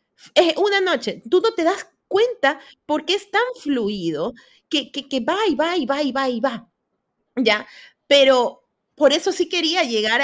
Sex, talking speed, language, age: female, 190 wpm, Spanish, 30-49